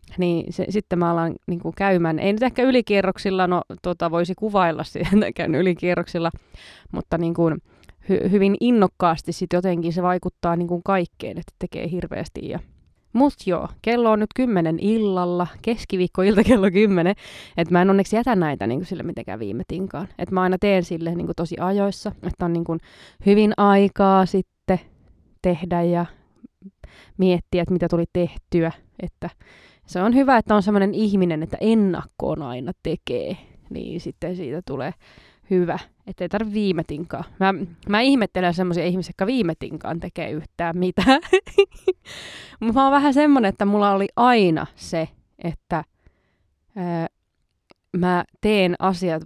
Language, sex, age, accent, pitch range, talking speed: Finnish, female, 20-39, native, 170-200 Hz, 155 wpm